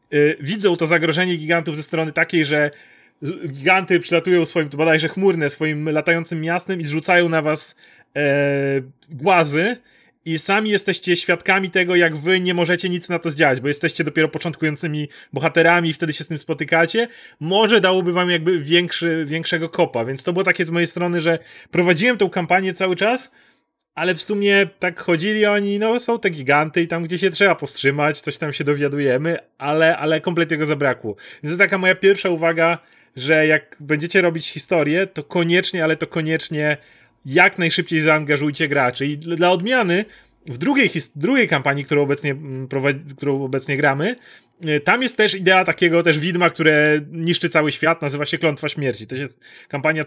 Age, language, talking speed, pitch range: 30-49, Polish, 175 wpm, 150-180 Hz